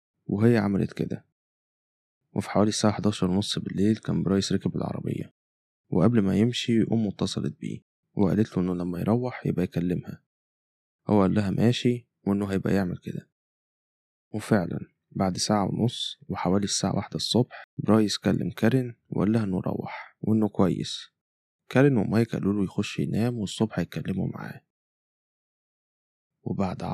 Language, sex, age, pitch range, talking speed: Arabic, male, 20-39, 95-110 Hz, 135 wpm